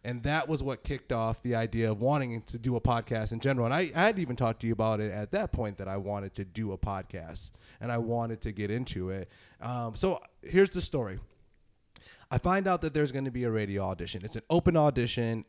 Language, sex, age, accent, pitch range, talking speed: English, male, 20-39, American, 110-140 Hz, 245 wpm